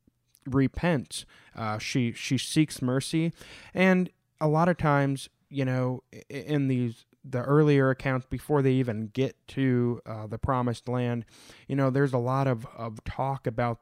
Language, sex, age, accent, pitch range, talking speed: English, male, 20-39, American, 115-140 Hz, 155 wpm